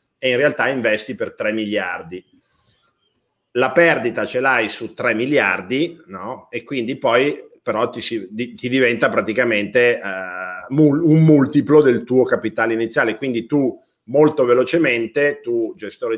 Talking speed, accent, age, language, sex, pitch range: 135 wpm, native, 50-69, Italian, male, 115-155 Hz